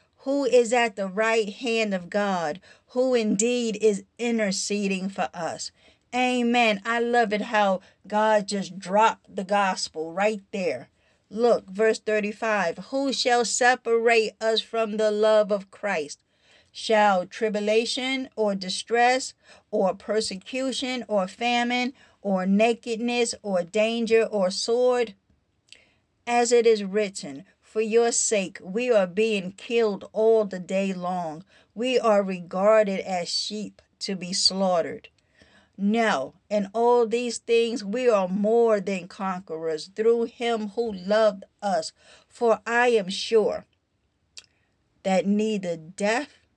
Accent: American